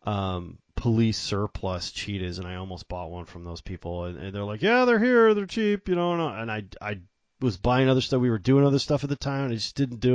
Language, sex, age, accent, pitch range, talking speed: English, male, 30-49, American, 95-135 Hz, 255 wpm